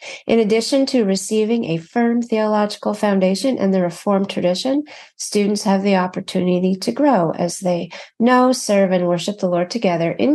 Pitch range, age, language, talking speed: 190-245 Hz, 40-59, English, 160 wpm